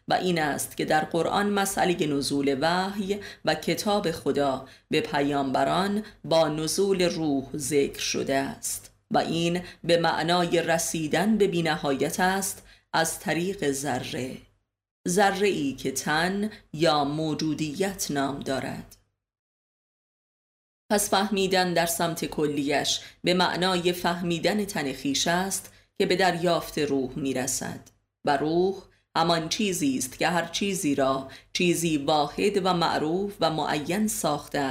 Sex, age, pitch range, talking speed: female, 30-49, 135-180 Hz, 120 wpm